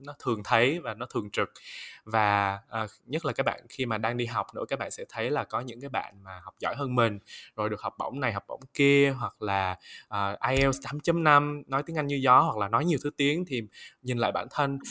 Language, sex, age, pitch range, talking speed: Vietnamese, male, 20-39, 110-140 Hz, 240 wpm